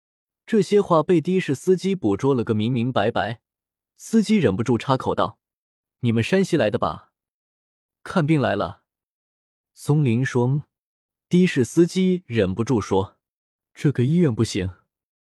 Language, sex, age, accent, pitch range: Chinese, male, 20-39, native, 110-165 Hz